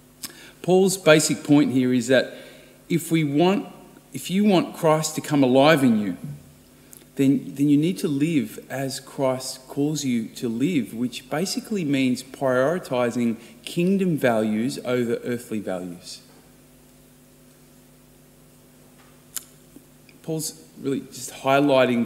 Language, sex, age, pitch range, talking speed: English, male, 30-49, 125-150 Hz, 115 wpm